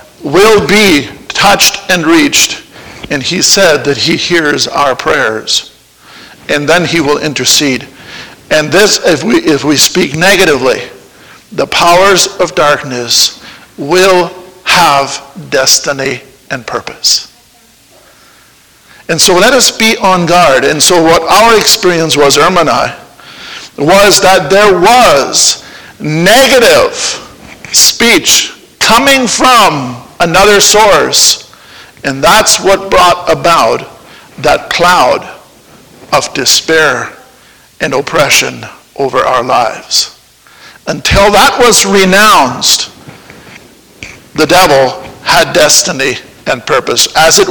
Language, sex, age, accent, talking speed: English, male, 50-69, American, 110 wpm